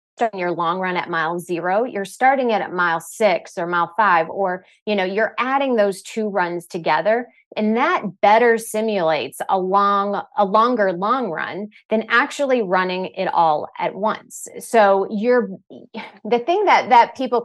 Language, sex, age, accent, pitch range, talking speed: English, female, 30-49, American, 185-235 Hz, 170 wpm